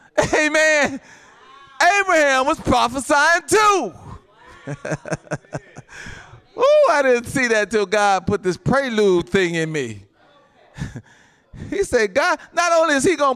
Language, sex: English, male